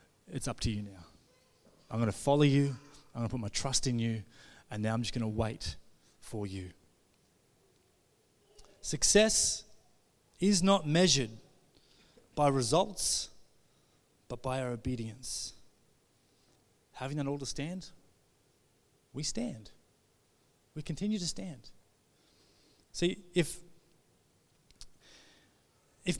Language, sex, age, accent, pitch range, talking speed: English, male, 30-49, Australian, 125-180 Hz, 115 wpm